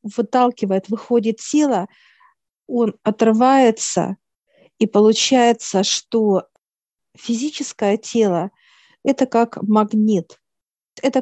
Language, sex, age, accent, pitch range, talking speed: Russian, female, 50-69, native, 200-245 Hz, 80 wpm